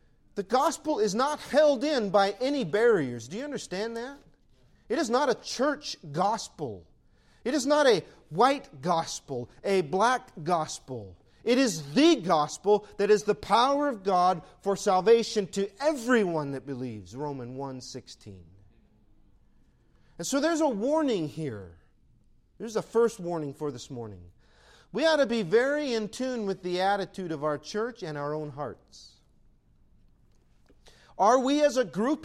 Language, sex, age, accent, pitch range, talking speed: English, male, 40-59, American, 145-240 Hz, 150 wpm